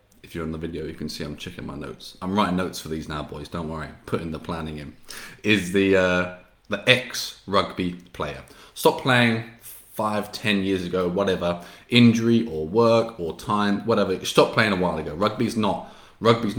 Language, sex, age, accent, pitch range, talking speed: English, male, 20-39, British, 85-110 Hz, 190 wpm